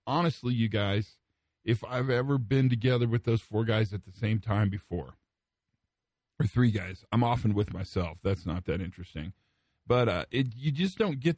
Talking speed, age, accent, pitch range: 185 wpm, 50-69, American, 100-130 Hz